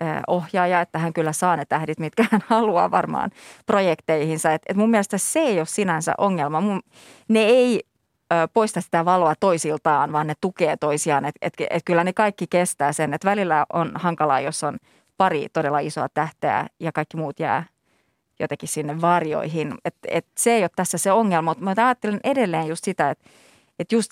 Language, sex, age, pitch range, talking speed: Finnish, female, 30-49, 160-215 Hz, 160 wpm